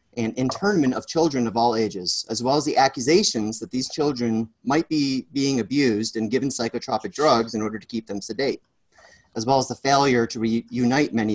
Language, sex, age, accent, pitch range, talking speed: English, male, 30-49, American, 115-150 Hz, 195 wpm